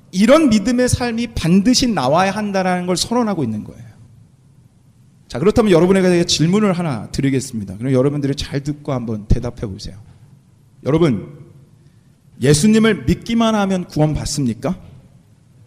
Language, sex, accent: Korean, male, native